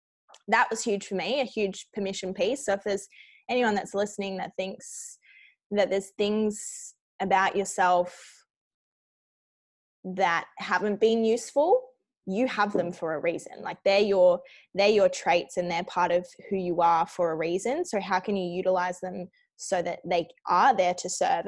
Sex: female